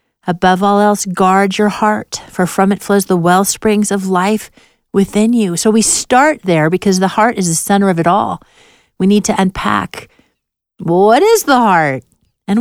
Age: 50-69